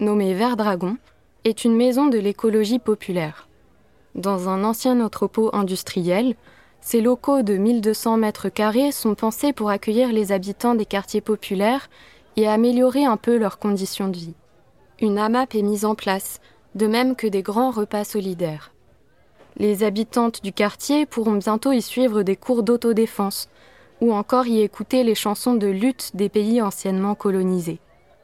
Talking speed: 155 wpm